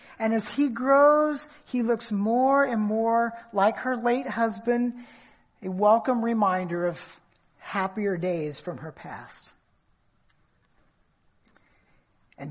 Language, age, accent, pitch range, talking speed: English, 40-59, American, 185-270 Hz, 110 wpm